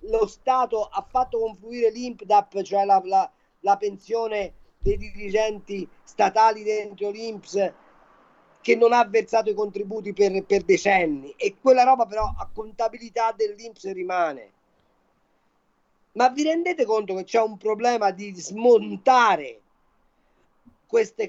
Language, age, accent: Italian, 40-59, native